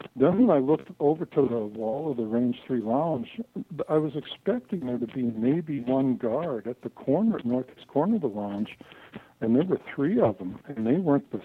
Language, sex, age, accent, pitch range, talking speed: English, male, 60-79, American, 120-150 Hz, 215 wpm